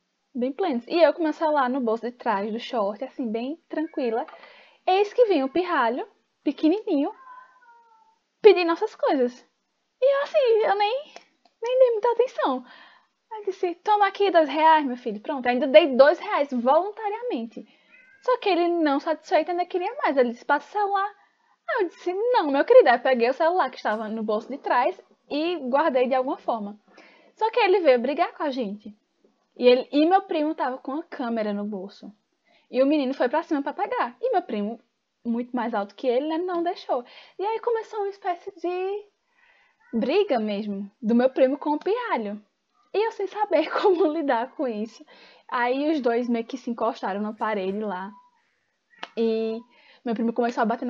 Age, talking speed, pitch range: 10-29, 190 wpm, 235-365 Hz